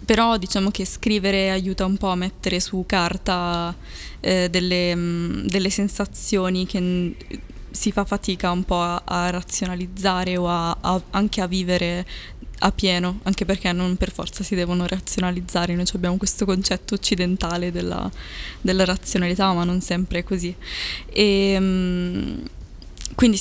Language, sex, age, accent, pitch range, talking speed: Italian, female, 20-39, native, 175-195 Hz, 135 wpm